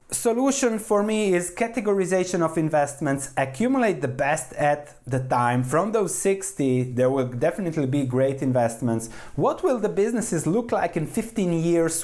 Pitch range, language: 125-175 Hz, English